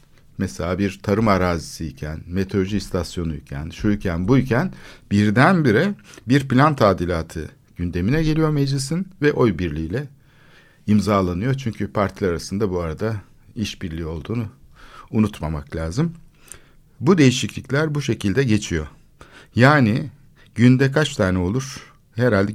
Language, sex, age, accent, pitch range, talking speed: Turkish, male, 60-79, native, 95-135 Hz, 105 wpm